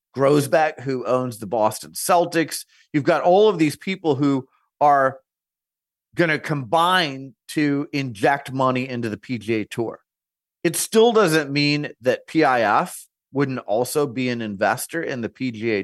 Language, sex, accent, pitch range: English, male, American, 120-160 Hz